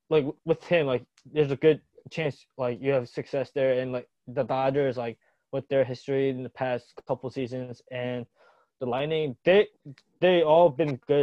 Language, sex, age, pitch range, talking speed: English, male, 20-39, 125-155 Hz, 180 wpm